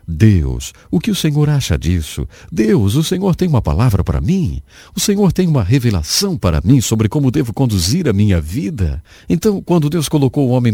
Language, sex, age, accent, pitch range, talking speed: English, male, 50-69, Brazilian, 80-130 Hz, 195 wpm